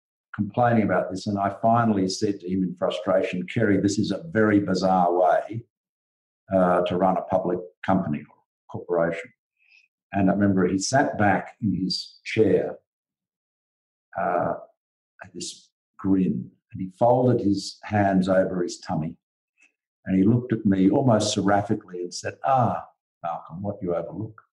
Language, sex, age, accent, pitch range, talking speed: English, male, 50-69, Australian, 95-125 Hz, 150 wpm